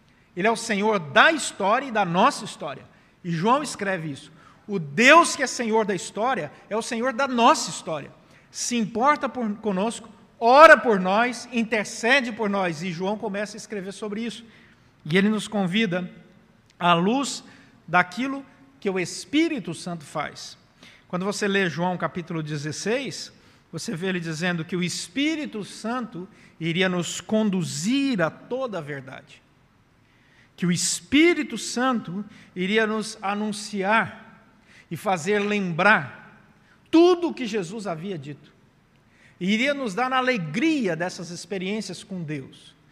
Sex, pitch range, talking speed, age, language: male, 175-230 Hz, 145 wpm, 50-69, Portuguese